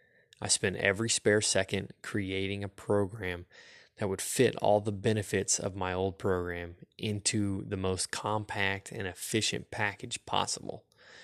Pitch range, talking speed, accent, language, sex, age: 95-105 Hz, 140 wpm, American, English, male, 20-39